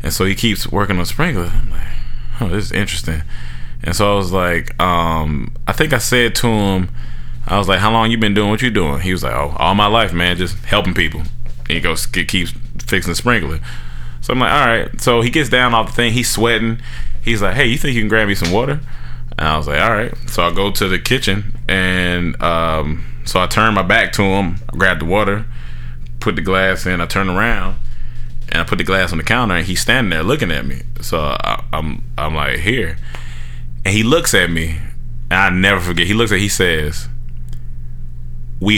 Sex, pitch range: male, 70-110 Hz